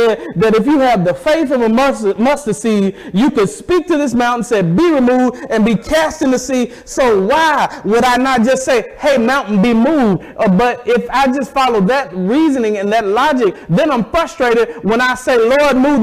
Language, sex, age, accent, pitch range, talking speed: English, male, 30-49, American, 210-280 Hz, 205 wpm